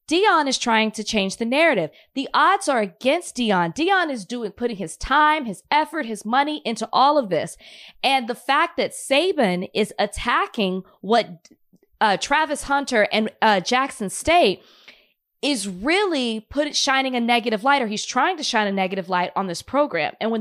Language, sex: English, female